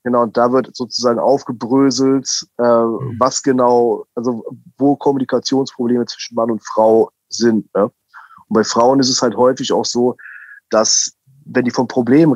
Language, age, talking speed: German, 30-49, 145 wpm